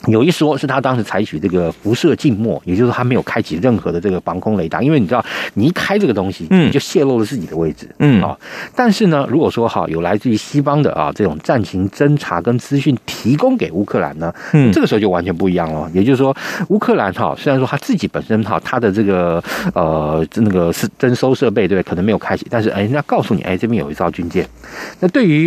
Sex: male